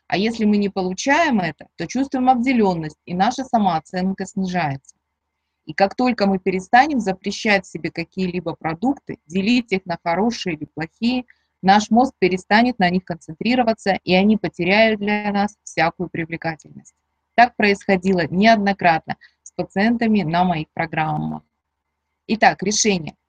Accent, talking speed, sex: native, 130 wpm, female